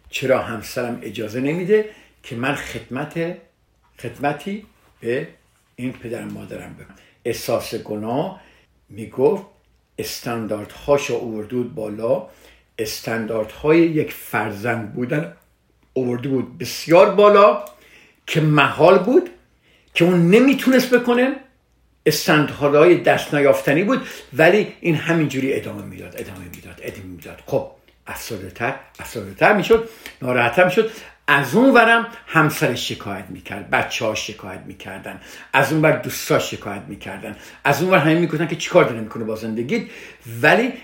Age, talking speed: 50-69, 120 wpm